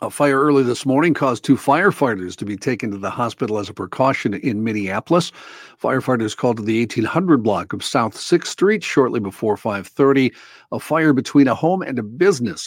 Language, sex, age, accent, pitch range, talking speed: English, male, 50-69, American, 110-145 Hz, 190 wpm